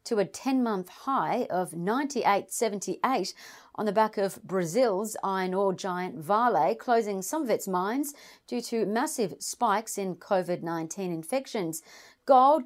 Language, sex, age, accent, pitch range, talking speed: English, female, 40-59, Australian, 190-245 Hz, 140 wpm